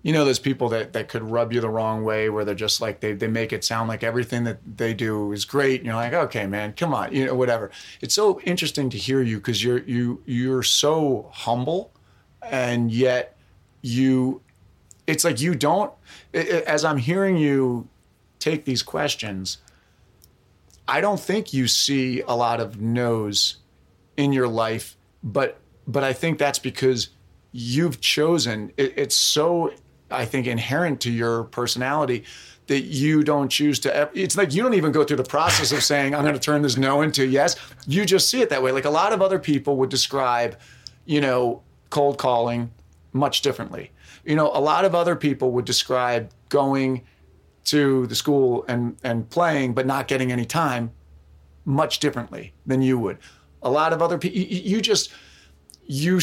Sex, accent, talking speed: male, American, 185 wpm